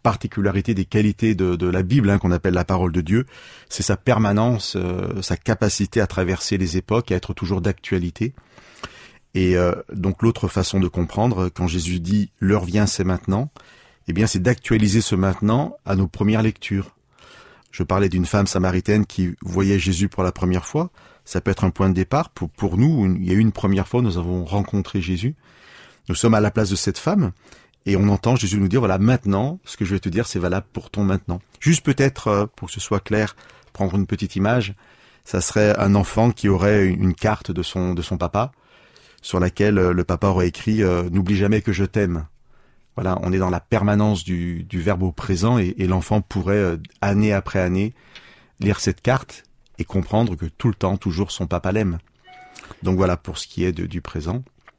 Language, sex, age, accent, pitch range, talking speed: French, male, 30-49, French, 90-110 Hz, 215 wpm